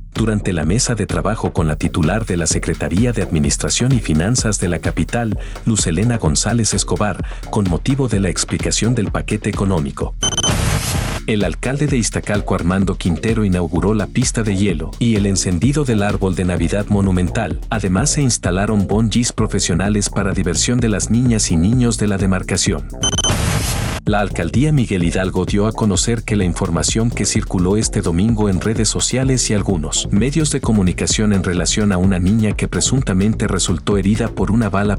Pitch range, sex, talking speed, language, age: 95-115 Hz, male, 170 wpm, Spanish, 50-69